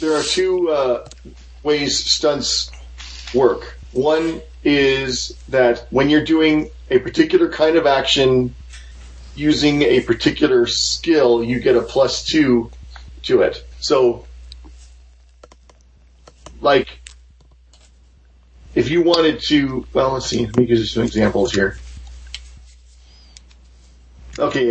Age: 40-59